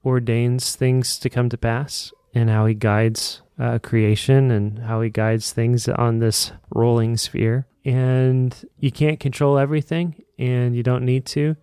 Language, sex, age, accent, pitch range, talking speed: English, male, 30-49, American, 110-130 Hz, 160 wpm